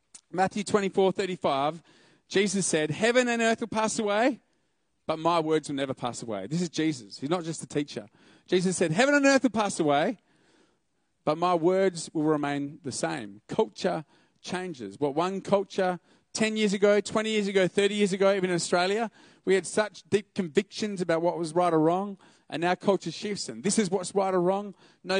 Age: 30-49